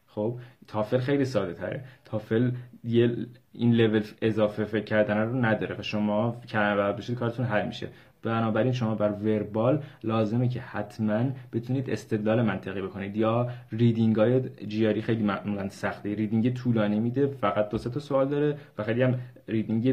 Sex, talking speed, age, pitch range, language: male, 150 wpm, 20-39, 105-125 Hz, Persian